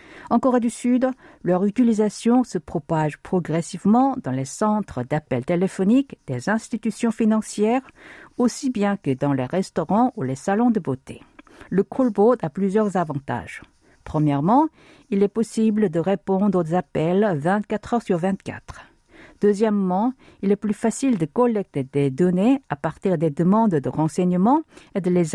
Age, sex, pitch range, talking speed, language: 50-69, female, 170-230 Hz, 150 wpm, French